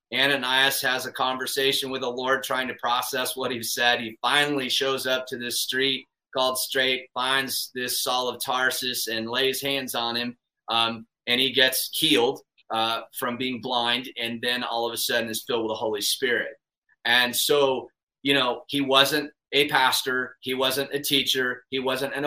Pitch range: 120-140 Hz